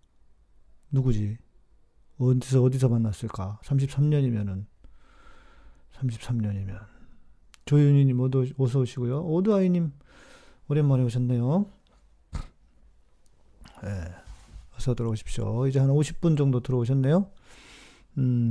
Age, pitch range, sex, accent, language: 40-59, 115-155 Hz, male, native, Korean